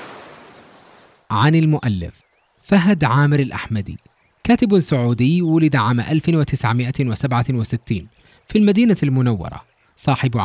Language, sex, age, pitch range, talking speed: English, male, 20-39, 120-165 Hz, 80 wpm